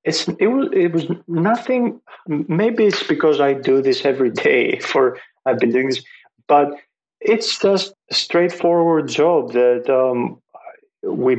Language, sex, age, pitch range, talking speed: English, male, 30-49, 105-155 Hz, 135 wpm